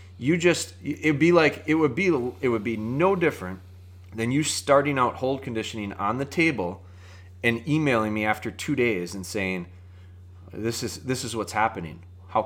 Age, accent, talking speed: 30-49, American, 180 wpm